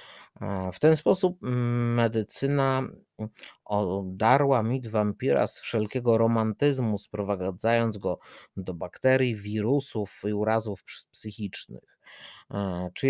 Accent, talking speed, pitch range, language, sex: native, 85 wpm, 105-130 Hz, Polish, male